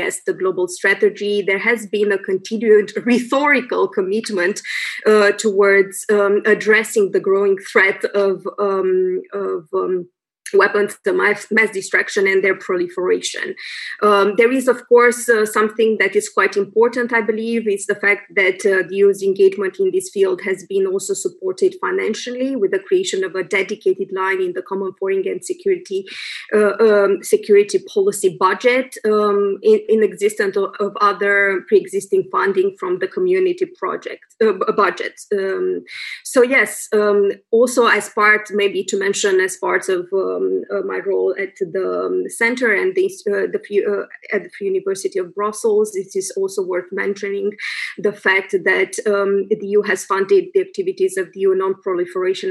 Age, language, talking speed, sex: 20-39, Slovak, 160 wpm, female